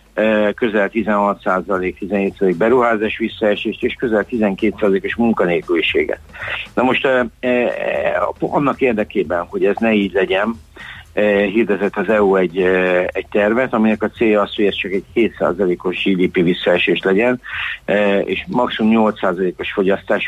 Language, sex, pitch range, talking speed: Hungarian, male, 100-115 Hz, 120 wpm